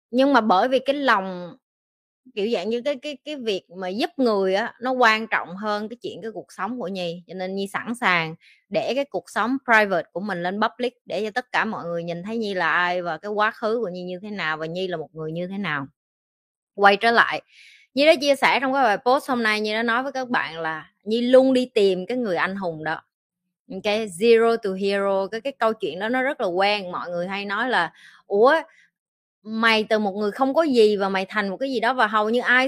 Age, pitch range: 20-39, 185-250 Hz